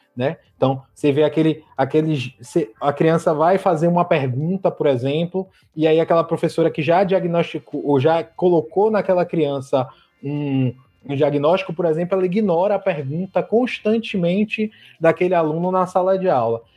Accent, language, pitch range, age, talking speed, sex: Brazilian, Portuguese, 145-190 Hz, 20-39, 150 wpm, male